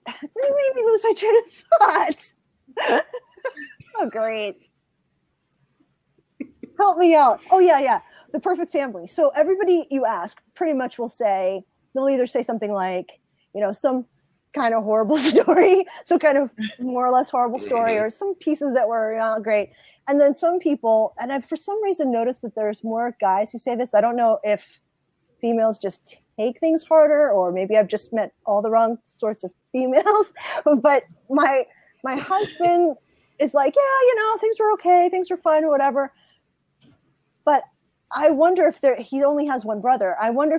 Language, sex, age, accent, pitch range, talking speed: English, female, 30-49, American, 220-320 Hz, 180 wpm